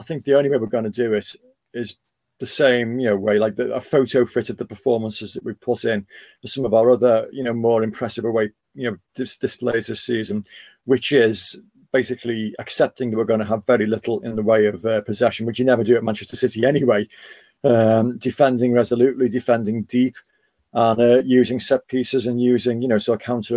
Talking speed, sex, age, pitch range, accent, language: 215 wpm, male, 40-59, 110-125 Hz, British, English